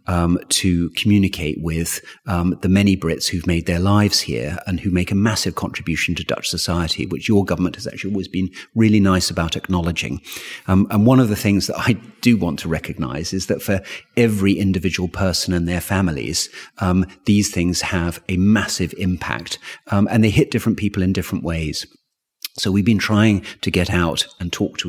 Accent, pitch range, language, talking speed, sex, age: British, 85-105 Hz, Dutch, 195 wpm, male, 40-59